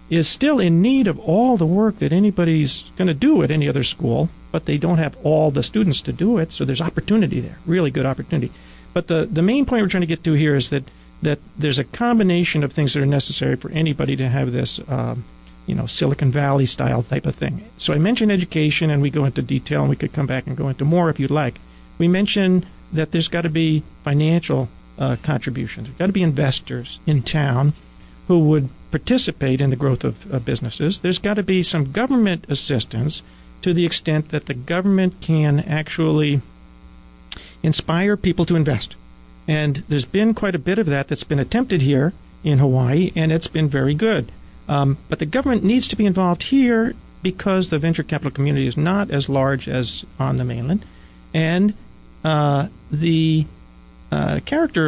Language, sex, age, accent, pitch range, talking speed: English, male, 50-69, American, 135-175 Hz, 200 wpm